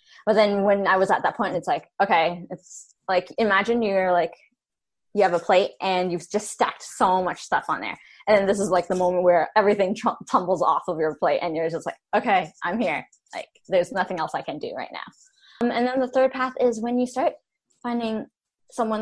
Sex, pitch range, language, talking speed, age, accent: female, 185-230 Hz, English, 225 wpm, 10-29, American